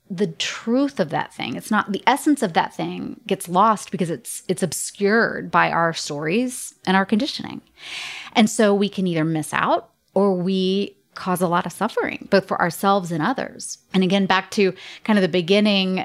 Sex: female